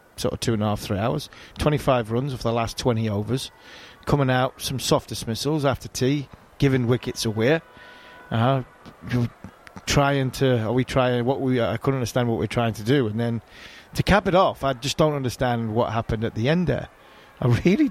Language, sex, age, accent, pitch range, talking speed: English, male, 30-49, British, 120-150 Hz, 200 wpm